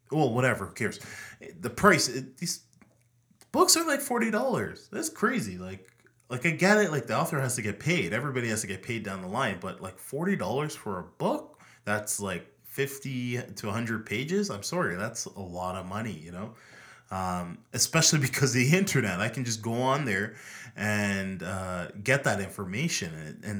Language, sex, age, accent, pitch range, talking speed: English, male, 20-39, American, 100-130 Hz, 190 wpm